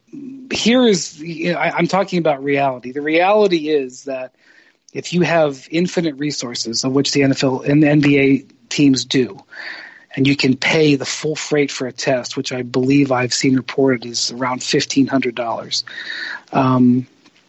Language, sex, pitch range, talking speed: English, male, 130-155 Hz, 160 wpm